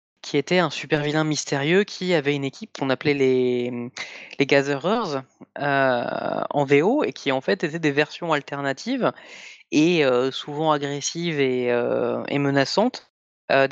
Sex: female